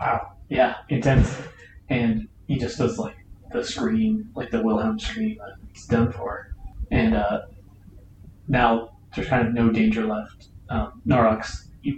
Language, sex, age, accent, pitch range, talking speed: English, male, 30-49, American, 95-120 Hz, 150 wpm